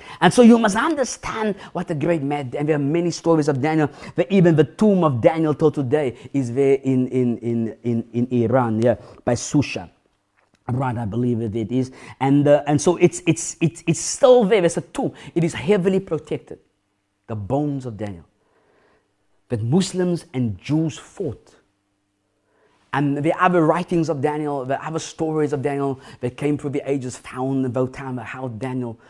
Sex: male